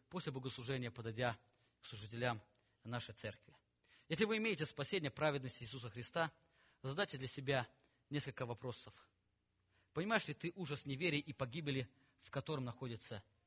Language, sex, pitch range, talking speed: English, male, 105-145 Hz, 130 wpm